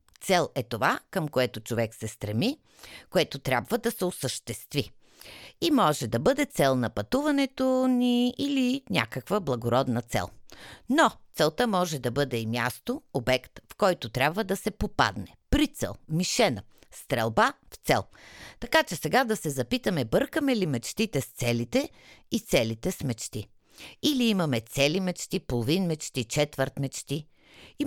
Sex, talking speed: female, 145 wpm